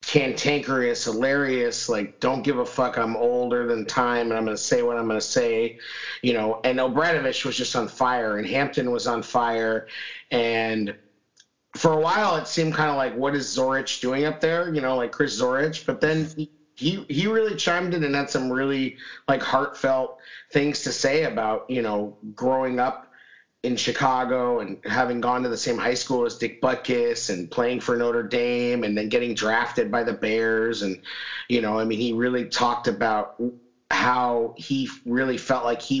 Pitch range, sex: 115-135 Hz, male